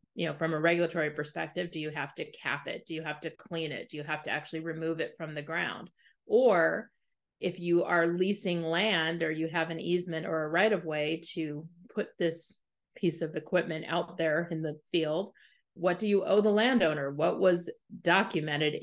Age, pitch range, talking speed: 30-49, 160-190 Hz, 200 wpm